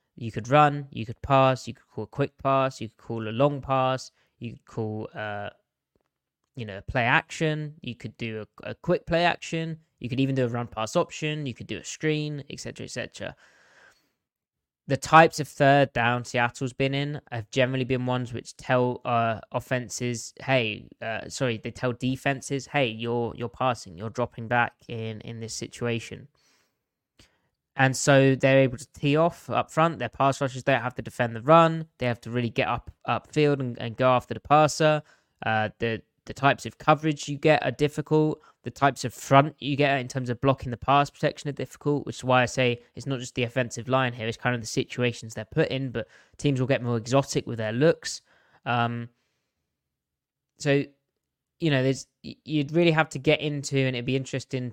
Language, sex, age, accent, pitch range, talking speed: English, male, 20-39, British, 120-140 Hz, 200 wpm